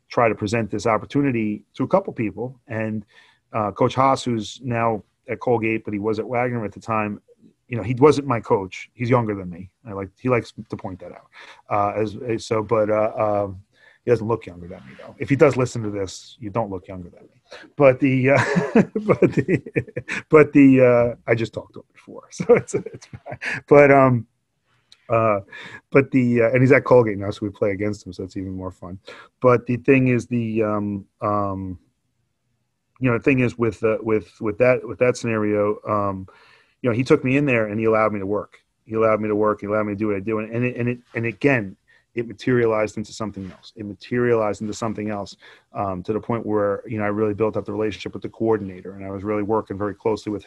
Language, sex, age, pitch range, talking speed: English, male, 30-49, 105-125 Hz, 230 wpm